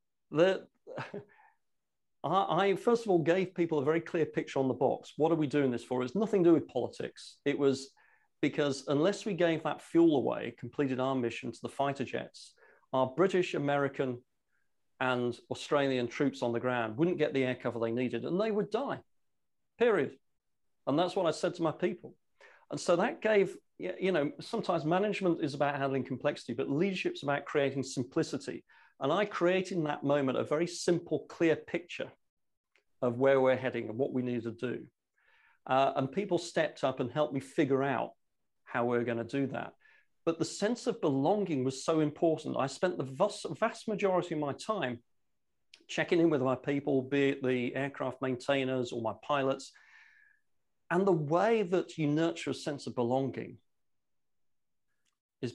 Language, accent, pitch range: English, British, 130-175 Hz